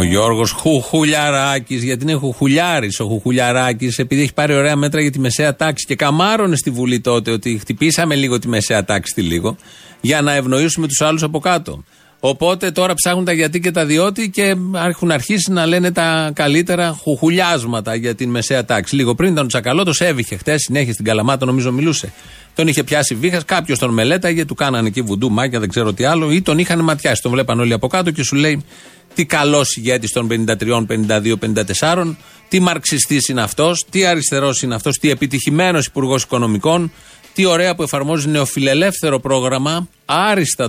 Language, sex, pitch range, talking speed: Greek, male, 125-170 Hz, 180 wpm